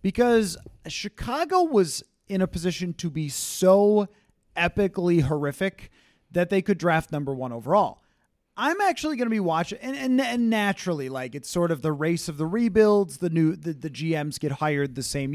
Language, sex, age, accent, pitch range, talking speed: English, male, 30-49, American, 155-205 Hz, 180 wpm